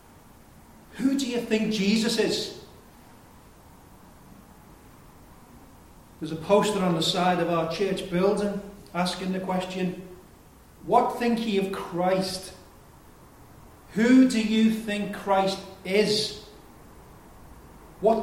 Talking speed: 100 wpm